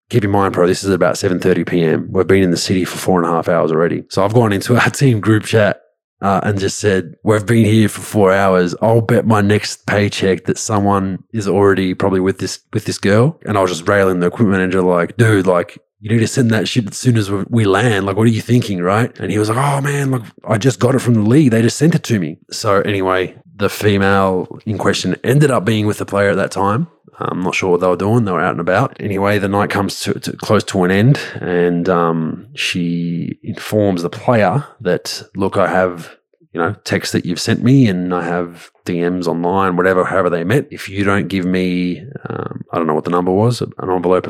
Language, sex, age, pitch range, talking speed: English, male, 20-39, 90-110 Hz, 245 wpm